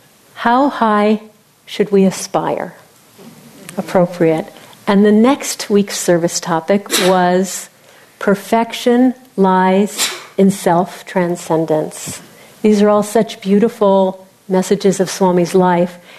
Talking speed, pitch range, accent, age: 95 wpm, 185-230 Hz, American, 50-69